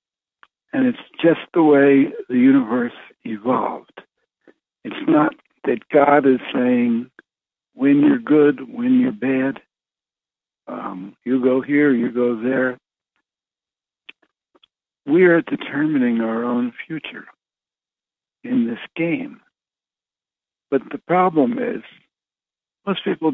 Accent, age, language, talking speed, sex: American, 60-79, English, 110 wpm, male